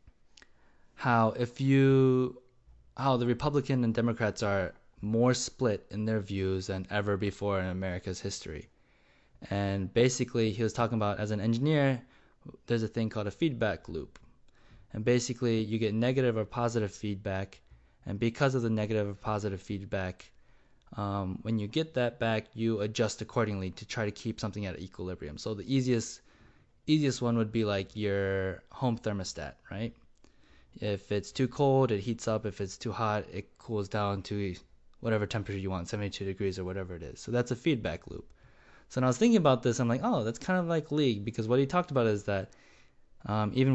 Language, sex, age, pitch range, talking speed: English, male, 20-39, 100-125 Hz, 185 wpm